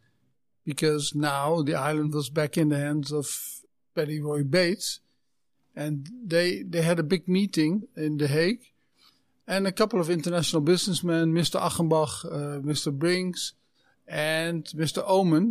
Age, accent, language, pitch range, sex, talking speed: 50-69, Dutch, Dutch, 145-175 Hz, male, 145 wpm